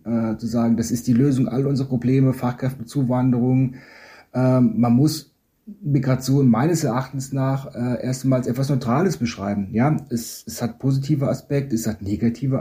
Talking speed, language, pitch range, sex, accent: 150 wpm, English, 115-130 Hz, male, German